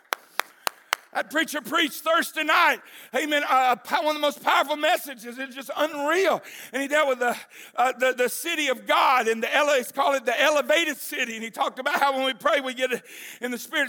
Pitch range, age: 255-295 Hz, 50-69